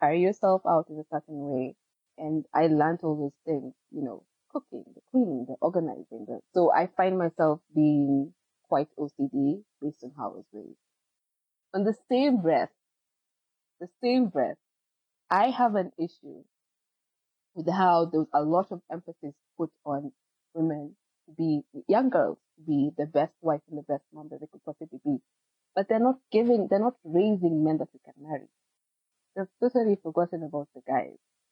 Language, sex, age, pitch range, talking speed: English, female, 20-39, 150-190 Hz, 175 wpm